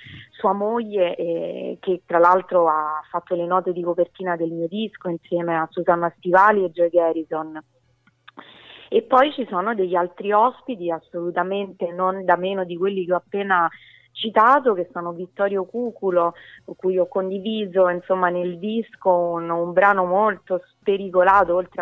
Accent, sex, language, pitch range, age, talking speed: native, female, Italian, 175-205 Hz, 30-49, 150 wpm